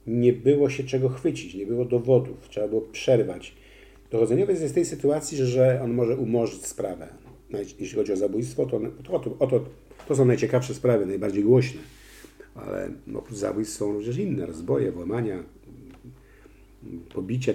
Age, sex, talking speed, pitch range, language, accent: 50-69, male, 150 wpm, 105-130 Hz, Polish, native